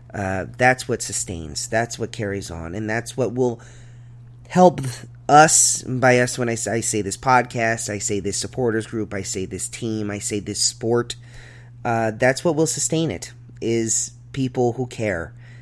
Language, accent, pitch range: English, American, 110-120 Hz